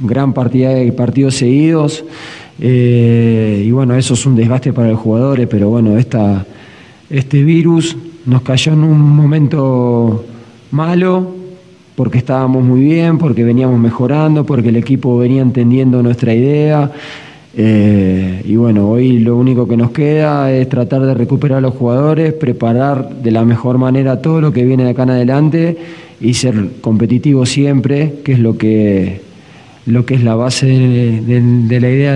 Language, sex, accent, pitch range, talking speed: Spanish, male, Argentinian, 115-145 Hz, 160 wpm